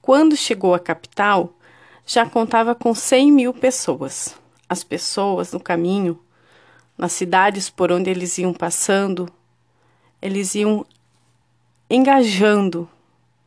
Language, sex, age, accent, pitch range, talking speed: Portuguese, female, 40-59, Brazilian, 180-230 Hz, 105 wpm